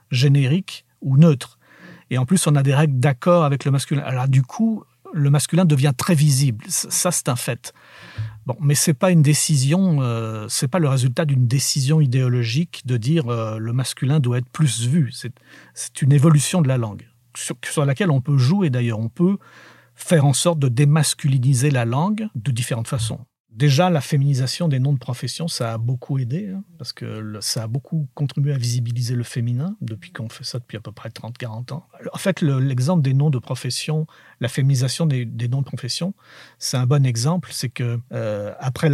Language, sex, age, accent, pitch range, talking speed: French, male, 50-69, French, 125-155 Hz, 195 wpm